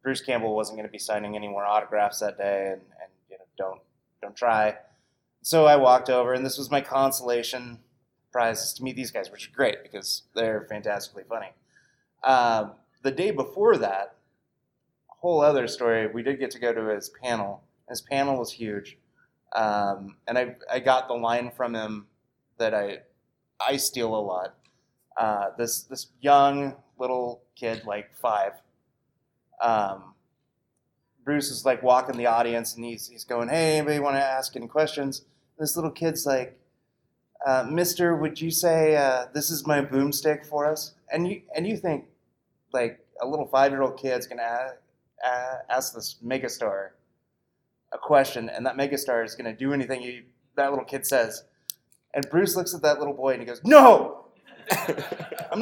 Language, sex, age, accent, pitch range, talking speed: English, male, 20-39, American, 115-150 Hz, 175 wpm